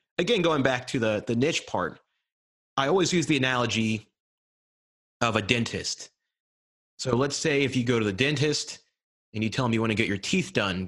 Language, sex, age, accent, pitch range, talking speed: English, male, 30-49, American, 105-135 Hz, 200 wpm